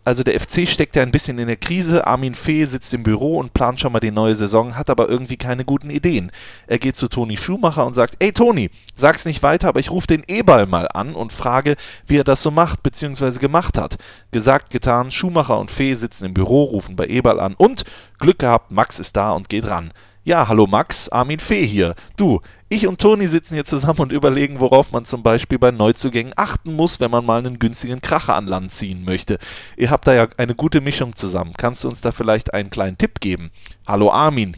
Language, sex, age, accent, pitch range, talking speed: German, male, 30-49, German, 105-145 Hz, 225 wpm